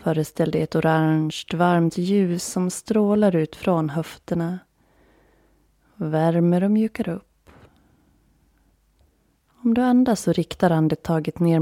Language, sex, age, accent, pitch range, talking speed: Swedish, female, 20-39, native, 155-185 Hz, 115 wpm